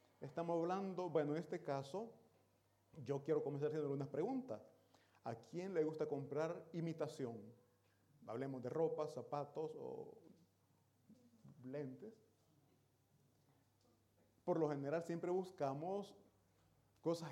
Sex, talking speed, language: male, 105 wpm, Italian